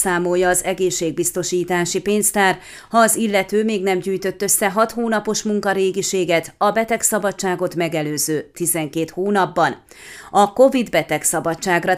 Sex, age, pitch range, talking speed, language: female, 30-49, 175-215 Hz, 105 wpm, Hungarian